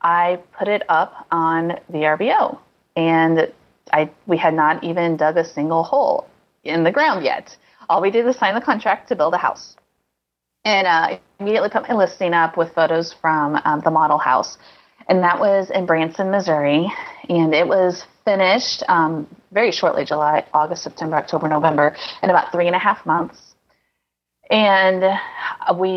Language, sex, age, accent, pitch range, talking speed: English, female, 30-49, American, 155-195 Hz, 170 wpm